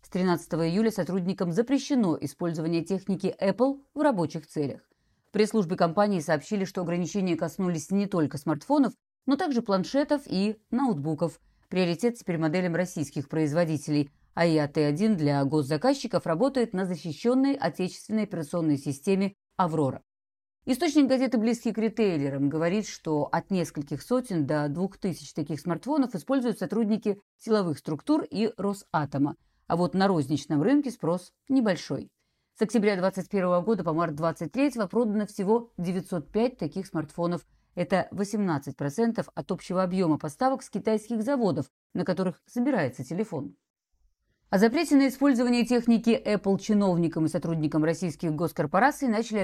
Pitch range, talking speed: 160-220 Hz, 130 wpm